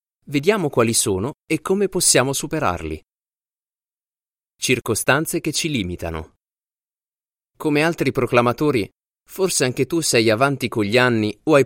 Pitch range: 100-140 Hz